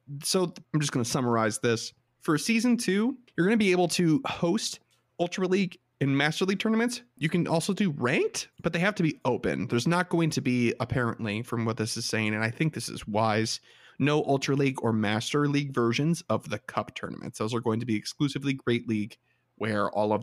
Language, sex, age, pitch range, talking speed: English, male, 30-49, 115-175 Hz, 215 wpm